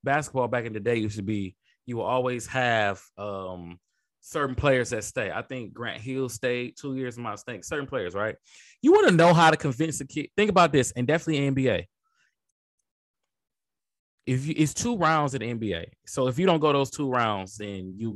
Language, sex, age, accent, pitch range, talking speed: English, male, 20-39, American, 105-140 Hz, 205 wpm